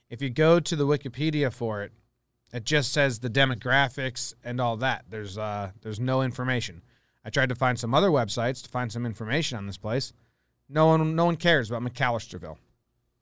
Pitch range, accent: 120-140 Hz, American